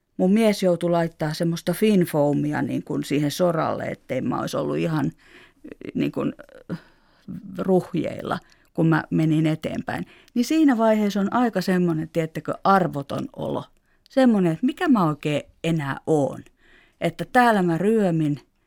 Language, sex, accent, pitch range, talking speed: Finnish, female, native, 160-215 Hz, 135 wpm